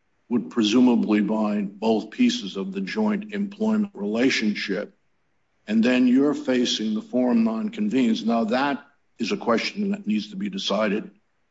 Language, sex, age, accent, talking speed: English, male, 60-79, American, 140 wpm